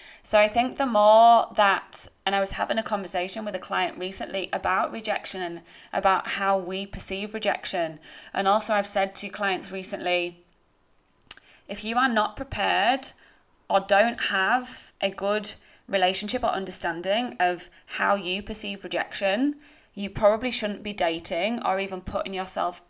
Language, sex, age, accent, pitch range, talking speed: English, female, 20-39, British, 180-220 Hz, 150 wpm